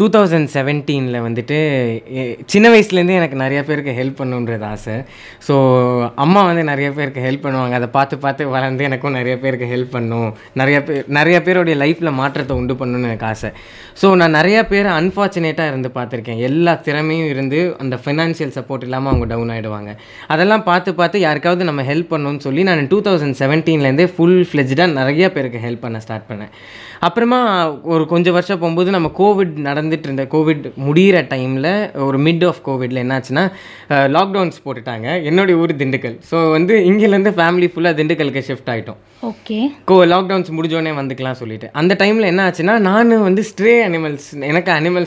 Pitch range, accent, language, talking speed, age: 130-175 Hz, native, Tamil, 110 wpm, 20-39